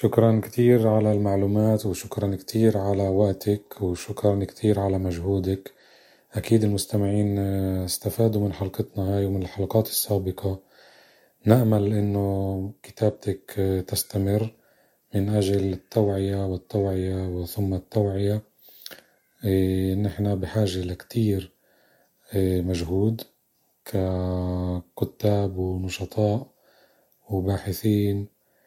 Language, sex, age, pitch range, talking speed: Arabic, male, 30-49, 95-105 Hz, 85 wpm